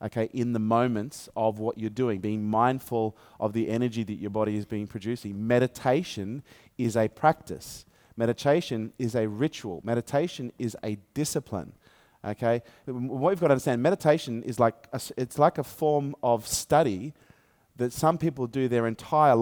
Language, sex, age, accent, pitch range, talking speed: English, male, 30-49, Australian, 110-130 Hz, 165 wpm